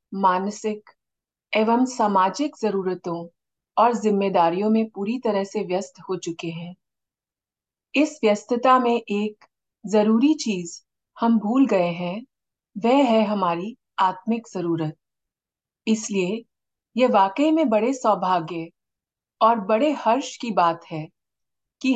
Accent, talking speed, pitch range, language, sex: native, 115 wpm, 185-240 Hz, Hindi, female